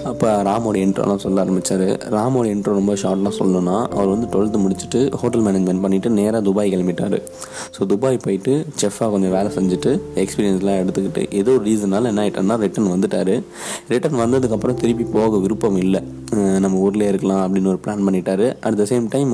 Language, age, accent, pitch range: Tamil, 20-39, native, 95-110 Hz